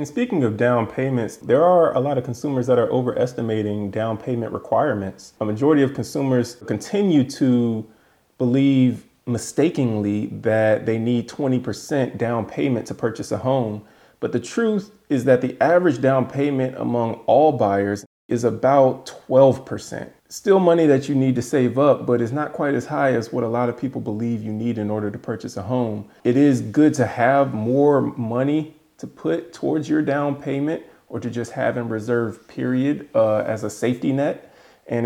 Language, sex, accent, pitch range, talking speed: English, male, American, 105-130 Hz, 185 wpm